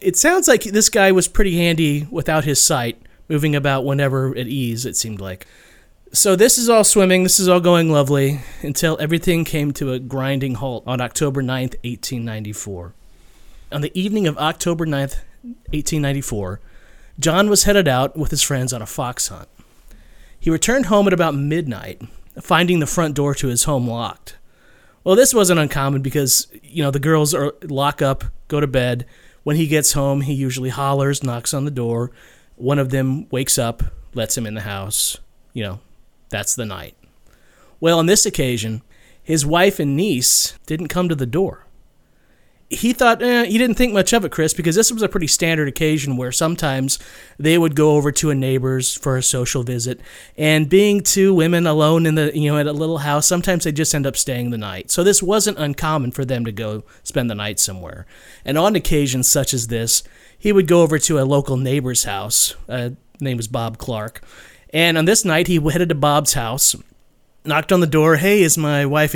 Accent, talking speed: American, 195 wpm